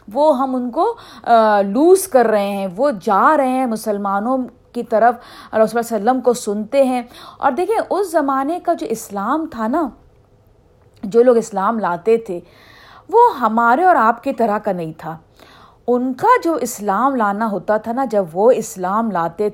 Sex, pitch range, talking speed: female, 205-285 Hz, 170 wpm